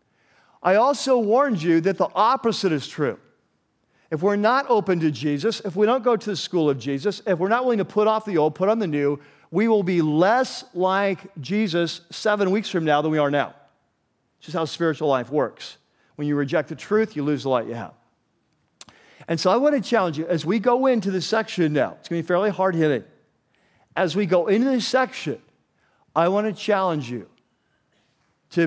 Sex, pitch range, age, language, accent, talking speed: male, 145-195 Hz, 50-69, English, American, 210 wpm